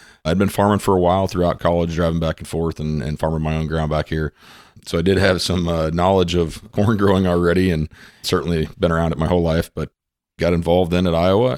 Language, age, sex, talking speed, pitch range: English, 40-59, male, 235 wpm, 75-85 Hz